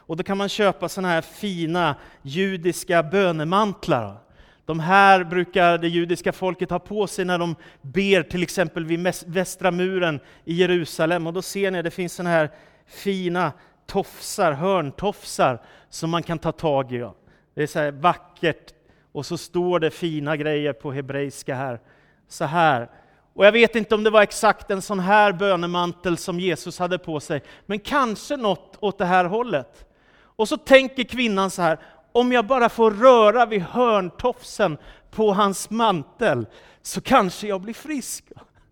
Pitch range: 160-205 Hz